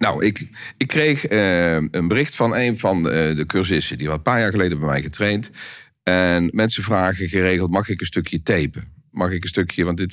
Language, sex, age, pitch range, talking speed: Dutch, male, 40-59, 80-100 Hz, 215 wpm